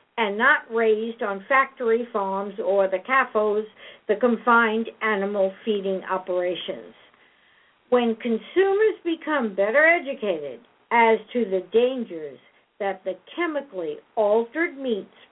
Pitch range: 220-330 Hz